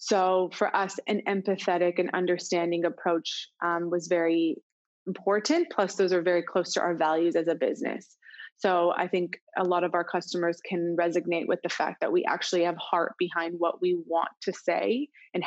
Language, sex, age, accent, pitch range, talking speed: English, female, 20-39, American, 170-190 Hz, 185 wpm